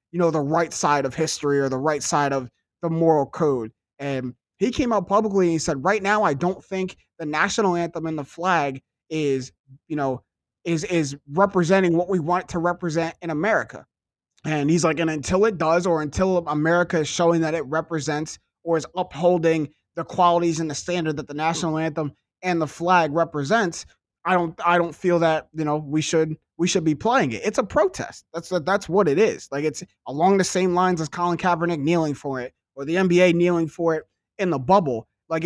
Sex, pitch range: male, 150-180 Hz